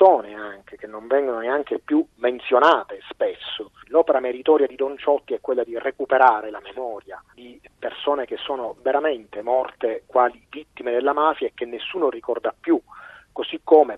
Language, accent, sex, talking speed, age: Italian, native, male, 155 wpm, 30-49